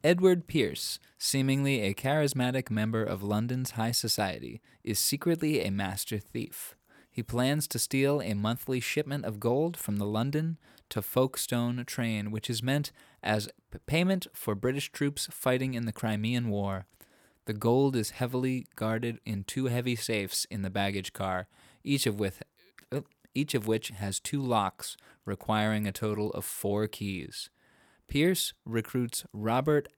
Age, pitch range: 20-39, 105-130 Hz